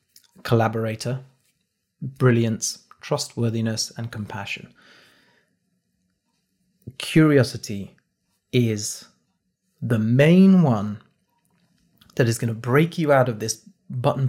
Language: English